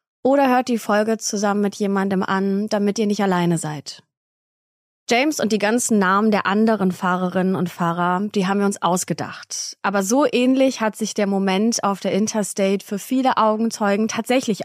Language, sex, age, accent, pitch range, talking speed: German, female, 20-39, German, 190-230 Hz, 170 wpm